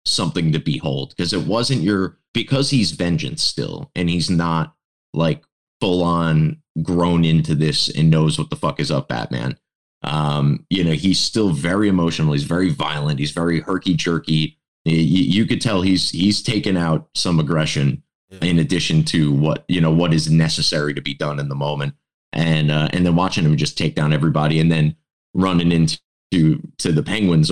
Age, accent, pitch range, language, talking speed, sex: 20-39, American, 75-90 Hz, English, 185 wpm, male